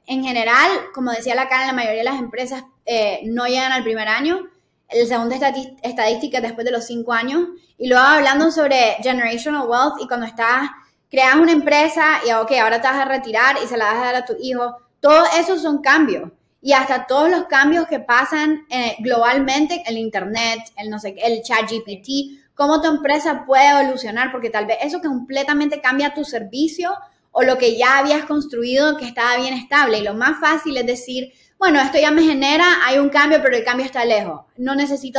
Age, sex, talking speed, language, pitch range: 20-39, female, 205 wpm, English, 240-295 Hz